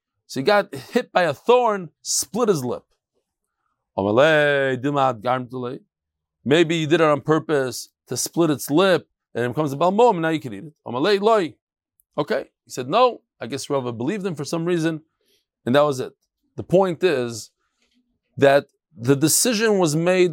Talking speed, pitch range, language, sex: 160 wpm, 150-230 Hz, English, male